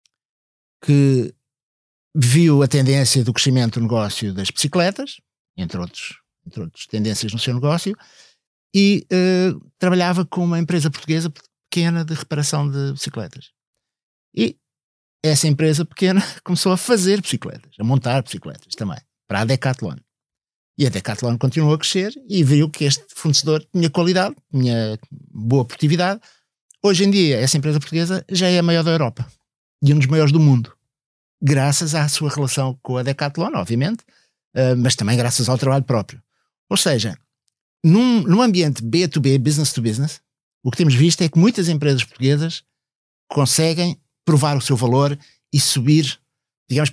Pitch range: 130-165 Hz